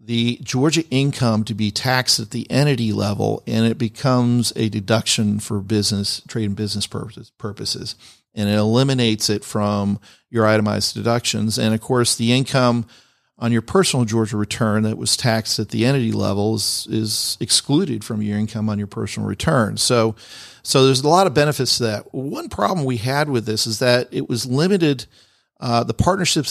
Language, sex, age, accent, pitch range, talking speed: English, male, 40-59, American, 105-125 Hz, 180 wpm